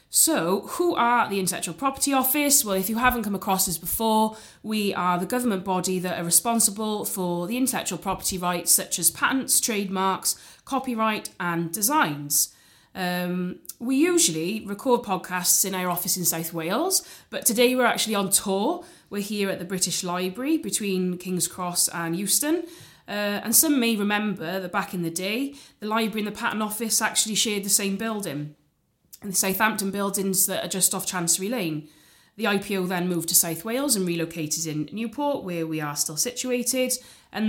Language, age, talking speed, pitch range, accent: English, 30-49, 175 wpm, 180-225 Hz, British